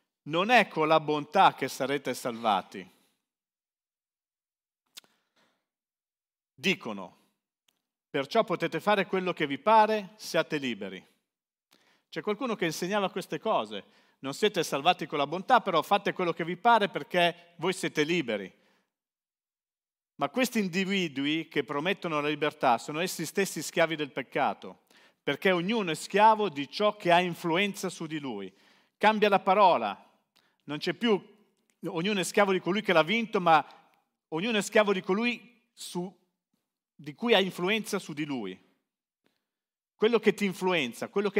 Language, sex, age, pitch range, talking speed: Italian, male, 50-69, 155-205 Hz, 140 wpm